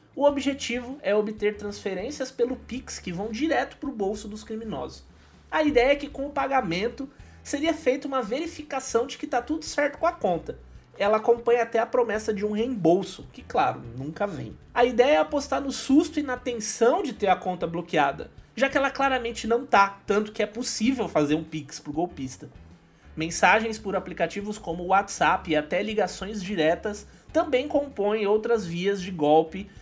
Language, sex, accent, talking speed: Portuguese, male, Brazilian, 180 wpm